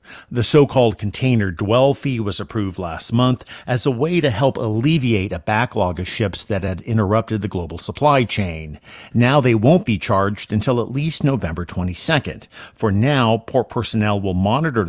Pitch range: 95-125 Hz